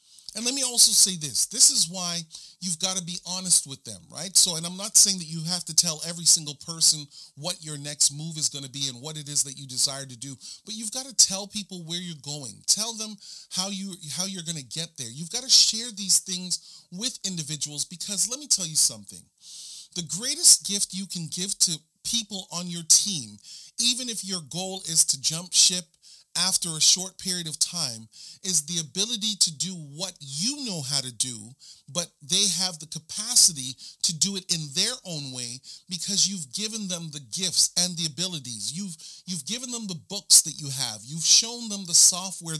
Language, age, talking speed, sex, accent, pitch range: English, 40-59, 215 wpm, male, American, 155-195 Hz